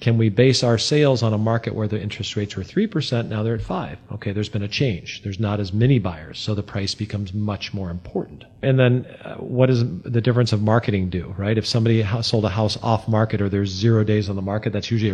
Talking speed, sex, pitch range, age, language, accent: 240 wpm, male, 105-125 Hz, 40-59, English, American